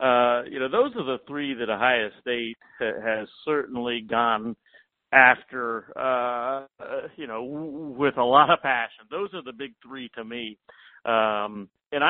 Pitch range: 120-155 Hz